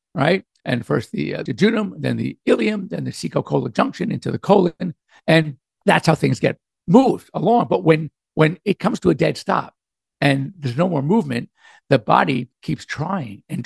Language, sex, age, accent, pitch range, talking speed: English, male, 50-69, American, 135-185 Hz, 190 wpm